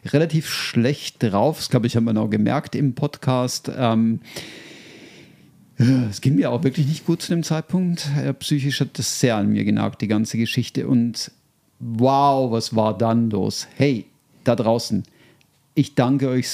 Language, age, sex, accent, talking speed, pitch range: German, 50-69, male, German, 165 wpm, 115-140 Hz